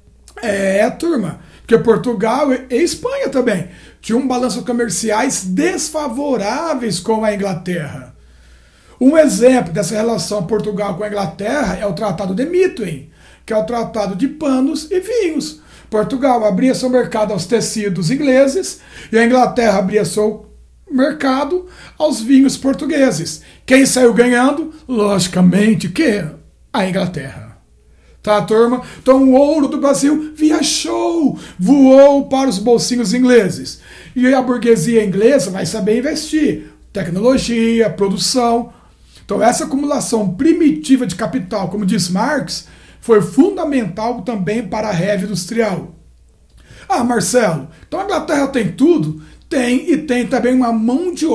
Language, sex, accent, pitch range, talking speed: Portuguese, male, Brazilian, 205-275 Hz, 130 wpm